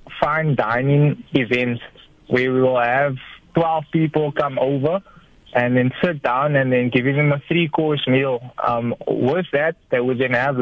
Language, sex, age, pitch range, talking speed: English, male, 20-39, 130-160 Hz, 170 wpm